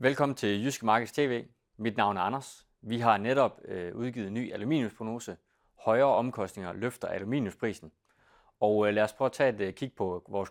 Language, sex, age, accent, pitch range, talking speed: Danish, male, 30-49, native, 95-120 Hz, 165 wpm